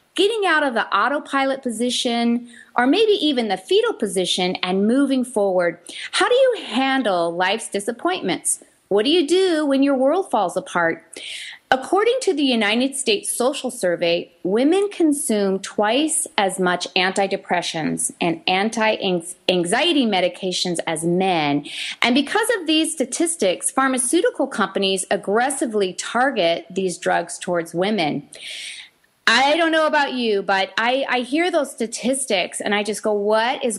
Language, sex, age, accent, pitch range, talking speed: English, female, 30-49, American, 190-280 Hz, 140 wpm